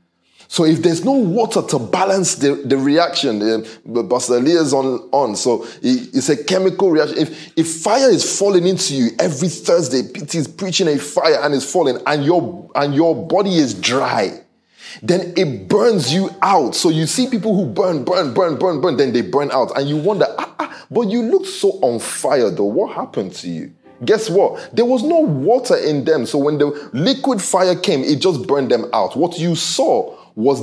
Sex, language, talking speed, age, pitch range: male, English, 200 wpm, 20-39, 150-220 Hz